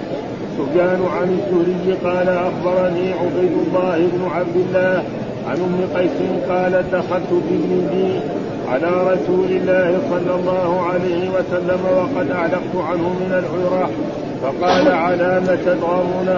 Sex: male